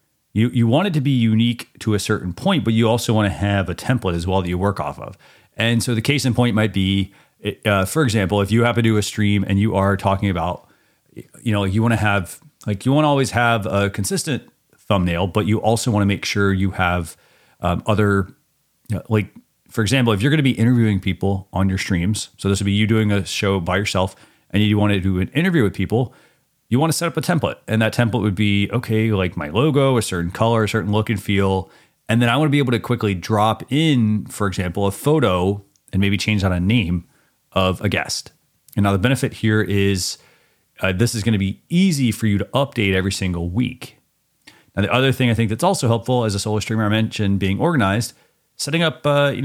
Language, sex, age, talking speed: English, male, 30-49, 240 wpm